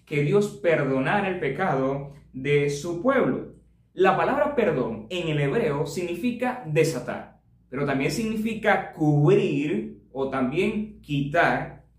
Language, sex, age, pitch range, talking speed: Spanish, male, 30-49, 150-210 Hz, 115 wpm